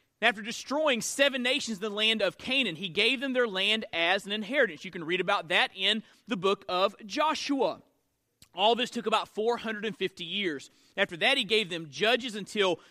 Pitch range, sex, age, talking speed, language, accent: 185-240 Hz, male, 30-49, 185 wpm, English, American